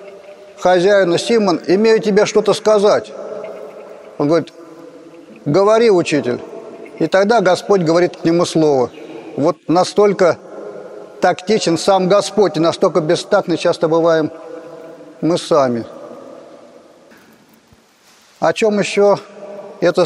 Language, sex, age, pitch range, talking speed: Russian, male, 50-69, 170-205 Hz, 100 wpm